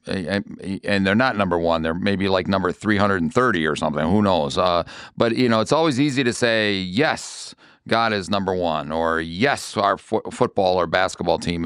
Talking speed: 185 wpm